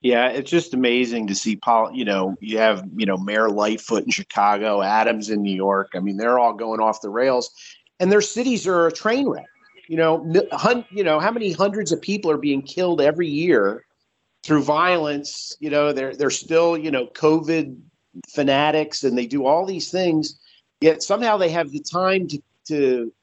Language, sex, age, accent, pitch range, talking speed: English, male, 50-69, American, 120-170 Hz, 195 wpm